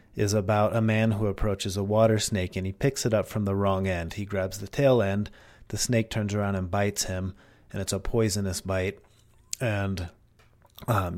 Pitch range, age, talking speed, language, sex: 95-110 Hz, 30-49, 200 wpm, English, male